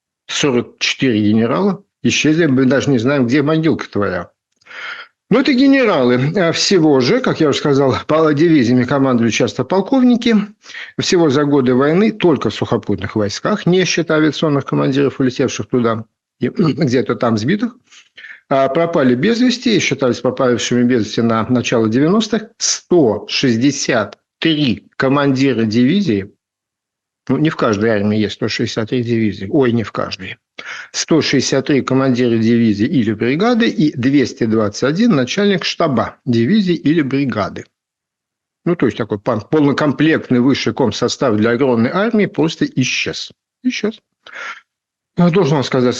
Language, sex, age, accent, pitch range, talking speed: Russian, male, 50-69, native, 120-170 Hz, 125 wpm